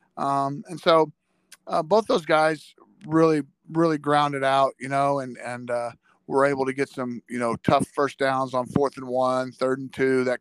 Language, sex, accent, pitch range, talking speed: English, male, American, 125-145 Hz, 195 wpm